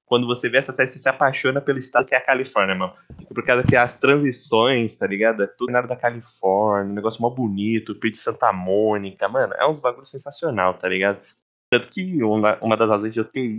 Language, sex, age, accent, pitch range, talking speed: Portuguese, male, 20-39, Brazilian, 110-140 Hz, 225 wpm